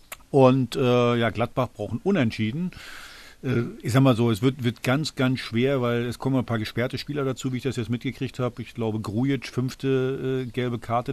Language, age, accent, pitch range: German, 50-69, German, 115-130 Hz